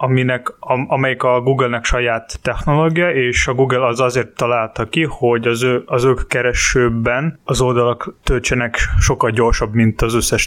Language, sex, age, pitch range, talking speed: Hungarian, male, 20-39, 115-135 Hz, 160 wpm